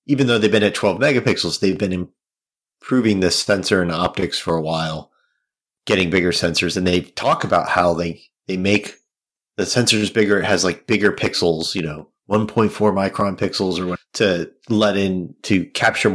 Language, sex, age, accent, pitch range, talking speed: English, male, 30-49, American, 85-105 Hz, 180 wpm